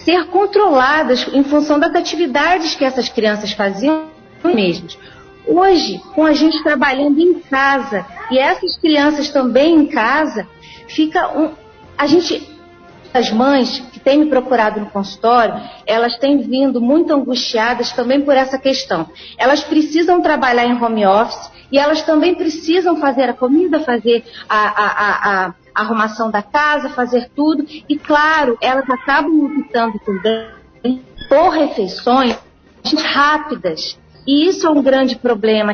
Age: 40-59